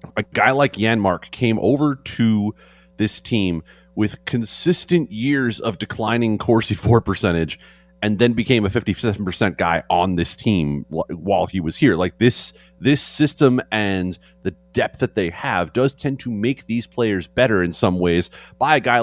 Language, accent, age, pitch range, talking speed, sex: English, American, 30-49, 85-115 Hz, 165 wpm, male